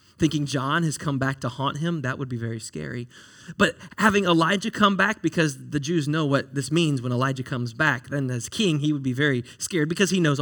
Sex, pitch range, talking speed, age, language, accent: male, 135-200 Hz, 230 wpm, 20-39, English, American